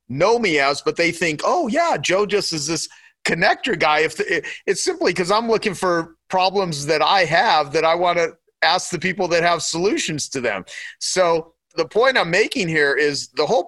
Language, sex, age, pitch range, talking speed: English, male, 40-59, 145-185 Hz, 210 wpm